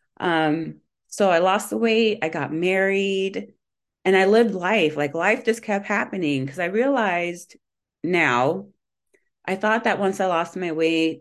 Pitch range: 160-190 Hz